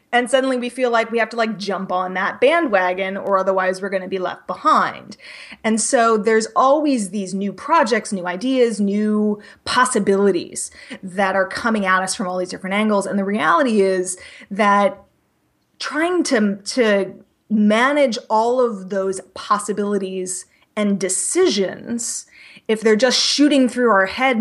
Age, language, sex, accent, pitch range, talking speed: 20-39, English, female, American, 195-260 Hz, 155 wpm